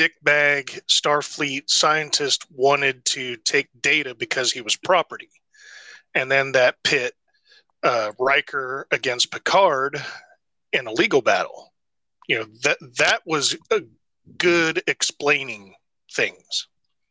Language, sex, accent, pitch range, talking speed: English, male, American, 130-160 Hz, 110 wpm